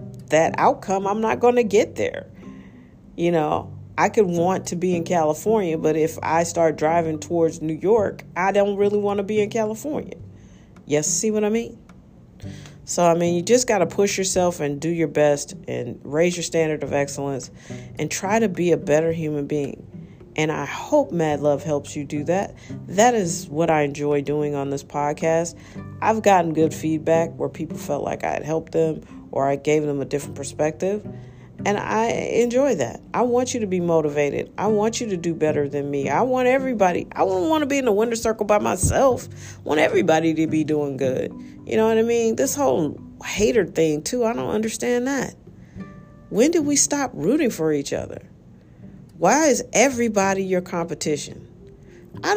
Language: English